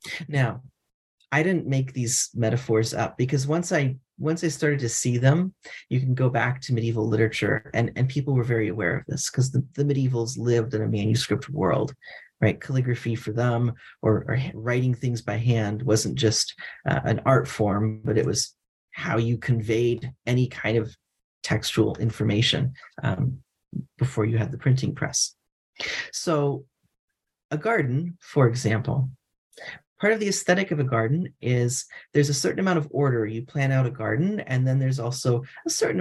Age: 30-49